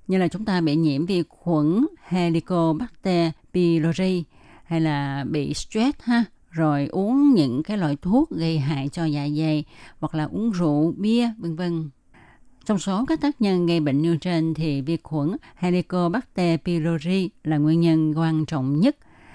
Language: Vietnamese